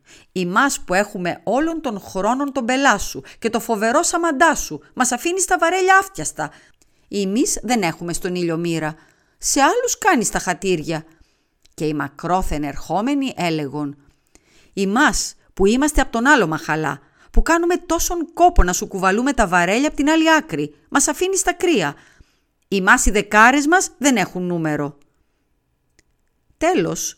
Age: 40-59